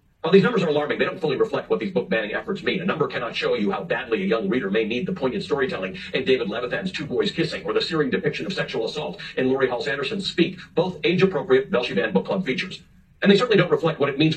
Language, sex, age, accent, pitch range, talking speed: English, male, 50-69, American, 145-190 Hz, 260 wpm